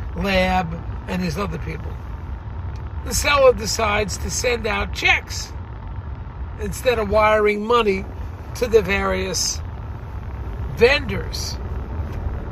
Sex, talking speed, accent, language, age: male, 95 wpm, American, English, 50-69